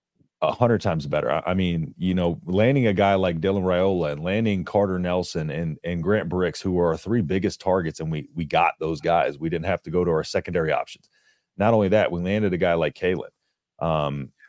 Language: English